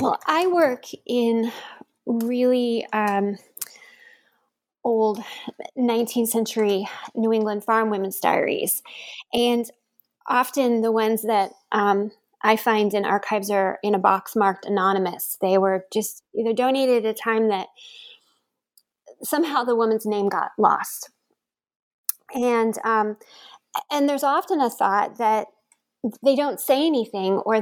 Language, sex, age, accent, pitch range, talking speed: English, female, 20-39, American, 210-265 Hz, 125 wpm